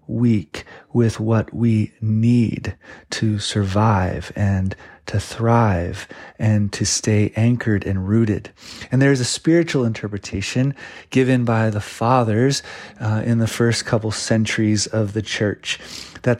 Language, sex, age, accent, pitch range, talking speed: English, male, 30-49, American, 110-135 Hz, 130 wpm